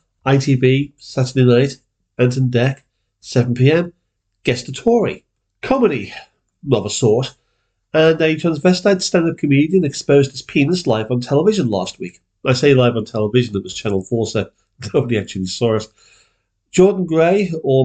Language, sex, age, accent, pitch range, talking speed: English, male, 40-59, British, 125-165 Hz, 145 wpm